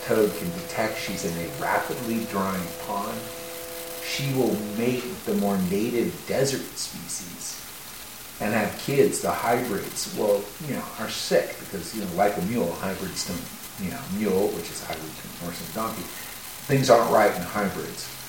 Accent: American